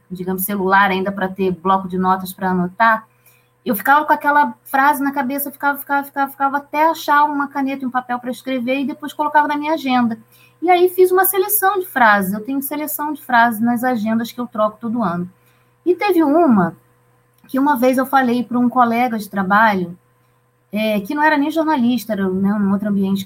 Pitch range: 205-280 Hz